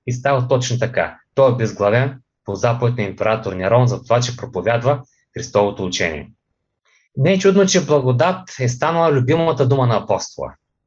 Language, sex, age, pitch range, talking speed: Bulgarian, male, 20-39, 110-135 Hz, 160 wpm